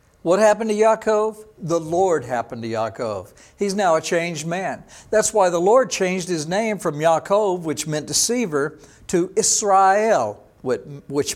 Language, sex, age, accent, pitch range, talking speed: English, male, 60-79, American, 140-210 Hz, 155 wpm